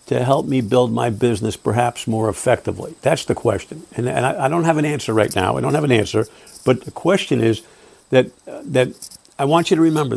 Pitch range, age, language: 115-165 Hz, 60-79, English